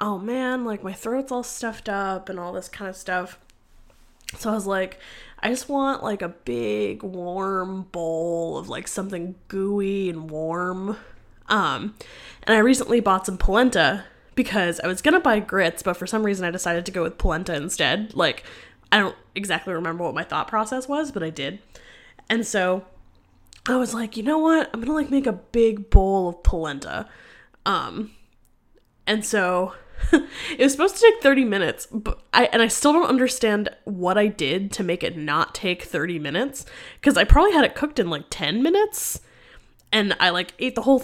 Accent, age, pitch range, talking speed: American, 10-29, 180-235 Hz, 190 wpm